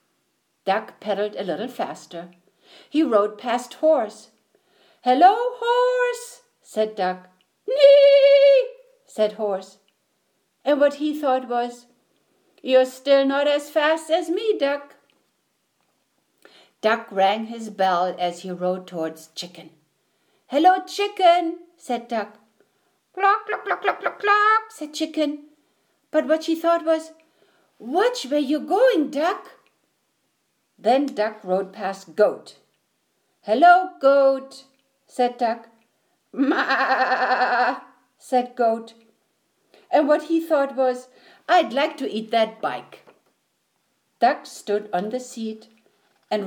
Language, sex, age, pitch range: English, female, 60-79, 220-320 Hz